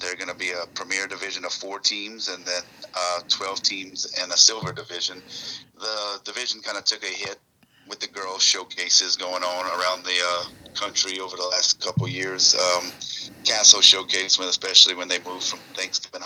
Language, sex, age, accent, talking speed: English, male, 30-49, American, 185 wpm